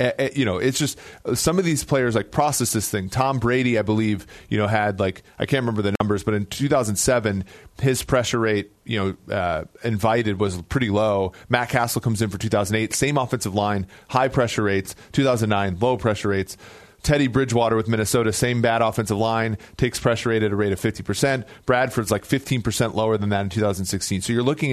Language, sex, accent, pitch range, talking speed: English, male, American, 105-125 Hz, 195 wpm